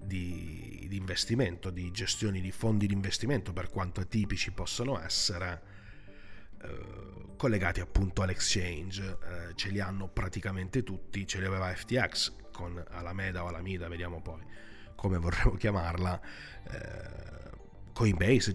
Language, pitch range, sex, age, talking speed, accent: Italian, 90-100 Hz, male, 30-49, 125 wpm, native